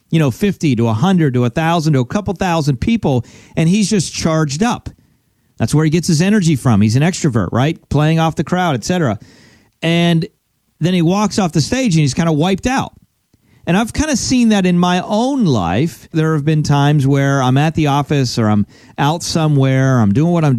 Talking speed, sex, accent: 220 wpm, male, American